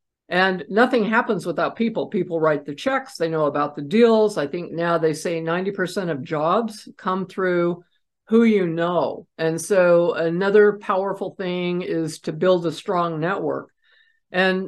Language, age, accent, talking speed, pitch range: English, 50-69, American, 160 wpm, 165-195 Hz